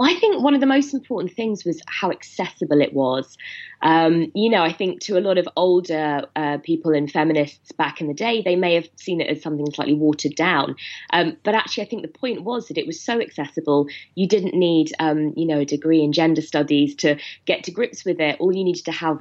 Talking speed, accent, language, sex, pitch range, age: 235 wpm, British, English, female, 150-185 Hz, 20-39